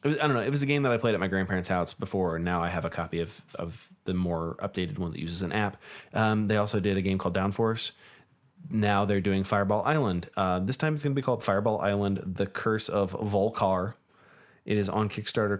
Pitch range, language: 90-115 Hz, English